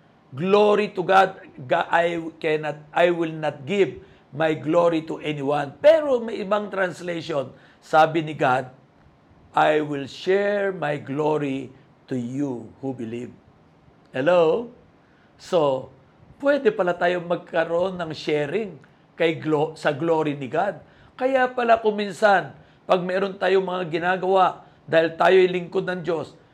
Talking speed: 125 wpm